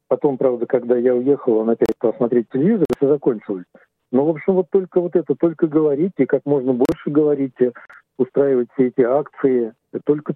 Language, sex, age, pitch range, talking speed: Russian, male, 50-69, 120-145 Hz, 175 wpm